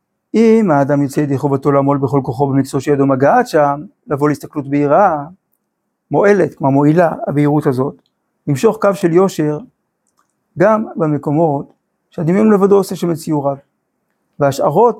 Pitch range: 145-195 Hz